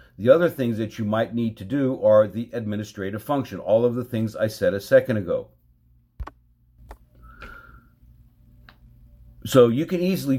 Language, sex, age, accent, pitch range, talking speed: English, male, 50-69, American, 105-130 Hz, 150 wpm